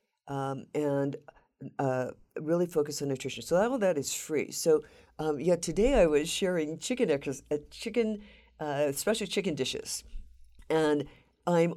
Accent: American